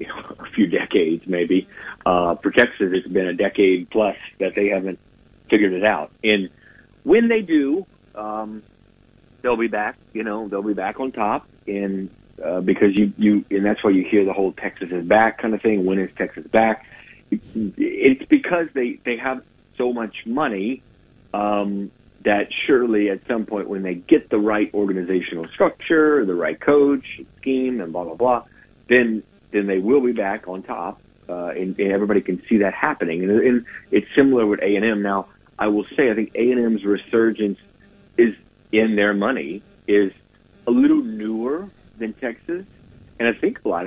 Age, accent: 50-69, American